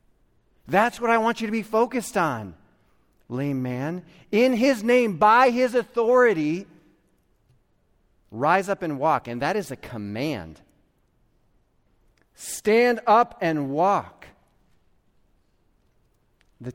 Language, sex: English, male